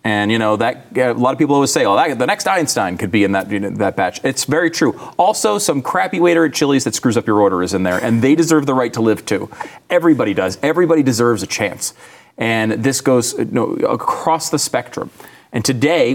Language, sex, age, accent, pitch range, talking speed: English, male, 30-49, American, 105-140 Hz, 240 wpm